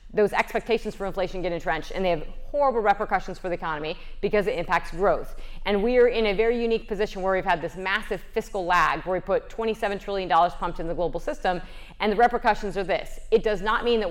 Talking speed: 225 wpm